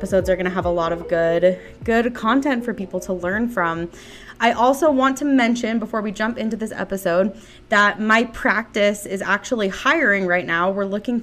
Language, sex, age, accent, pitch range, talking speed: English, female, 20-39, American, 180-230 Hz, 205 wpm